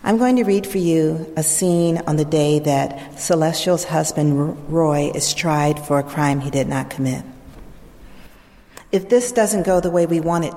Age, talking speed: 50-69, 185 wpm